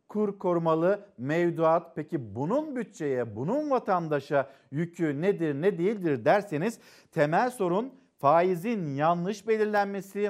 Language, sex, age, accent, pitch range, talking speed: Turkish, male, 50-69, native, 155-210 Hz, 105 wpm